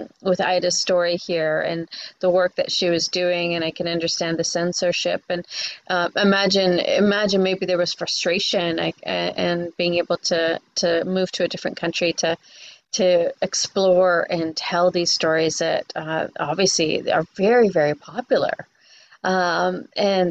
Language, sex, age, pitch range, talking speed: English, female, 30-49, 175-195 Hz, 150 wpm